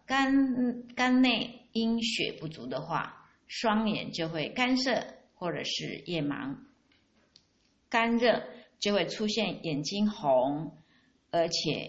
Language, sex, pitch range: Chinese, female, 165-240 Hz